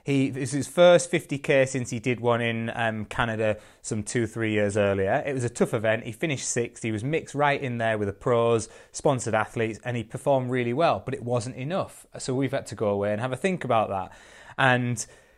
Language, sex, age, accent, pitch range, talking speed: English, male, 20-39, British, 110-145 Hz, 230 wpm